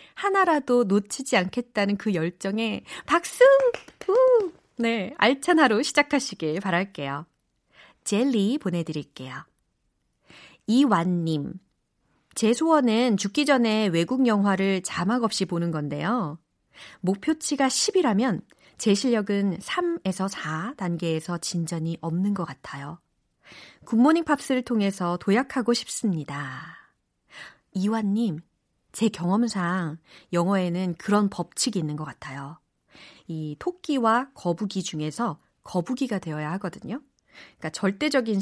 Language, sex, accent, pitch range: Korean, female, native, 175-265 Hz